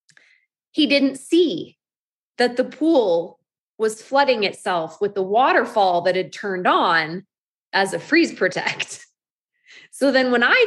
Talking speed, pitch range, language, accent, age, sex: 135 wpm, 215-335 Hz, English, American, 20-39, female